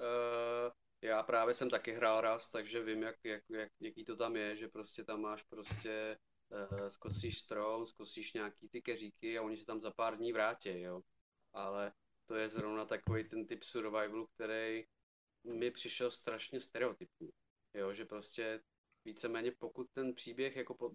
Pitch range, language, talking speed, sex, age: 110-125 Hz, Czech, 165 wpm, male, 20-39